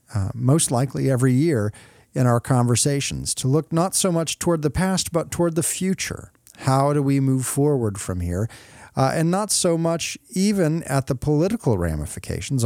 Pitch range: 110-150 Hz